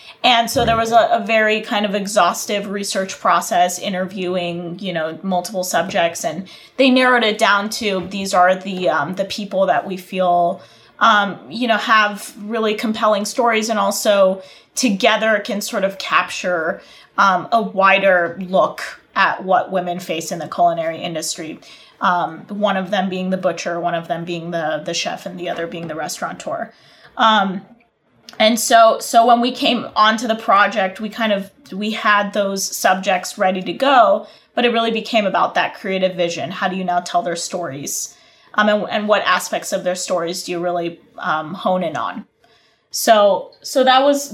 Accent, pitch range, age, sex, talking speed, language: American, 185-230 Hz, 20-39, female, 180 wpm, English